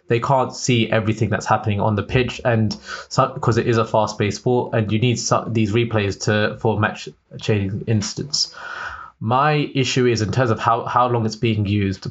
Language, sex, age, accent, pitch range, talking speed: English, male, 20-39, British, 105-120 Hz, 200 wpm